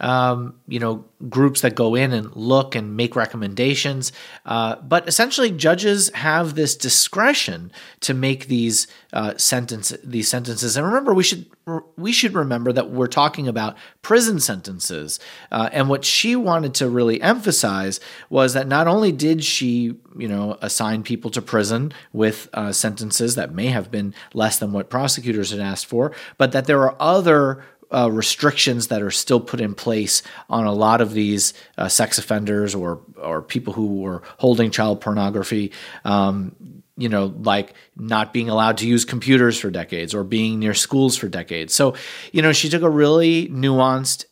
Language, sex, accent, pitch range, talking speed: English, male, American, 110-145 Hz, 175 wpm